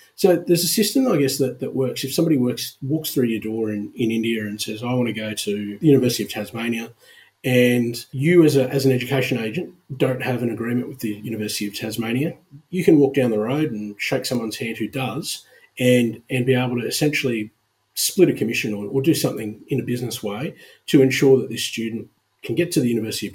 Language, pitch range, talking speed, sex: English, 110-140 Hz, 220 wpm, male